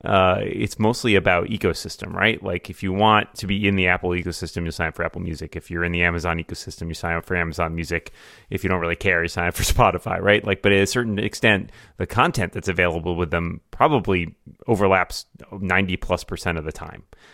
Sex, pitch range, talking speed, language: male, 90-110 Hz, 225 wpm, English